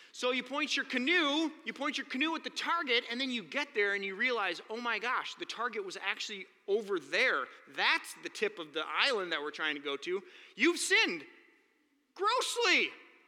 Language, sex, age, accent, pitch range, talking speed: English, male, 30-49, American, 235-400 Hz, 200 wpm